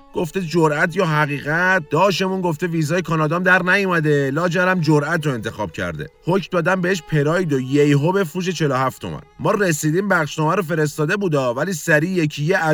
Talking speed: 155 wpm